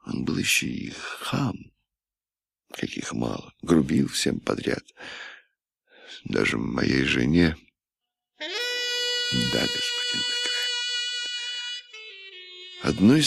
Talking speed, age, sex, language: 75 wpm, 60-79, male, Russian